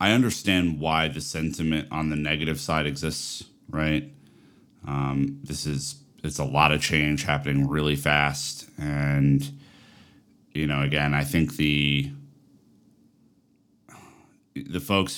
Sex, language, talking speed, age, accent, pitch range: male, English, 125 wpm, 30-49, American, 70-80 Hz